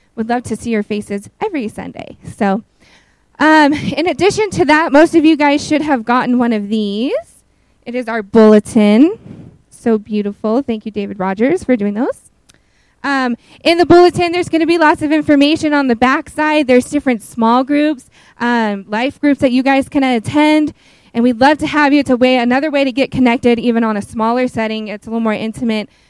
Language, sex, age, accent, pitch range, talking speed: English, female, 20-39, American, 220-285 Hz, 200 wpm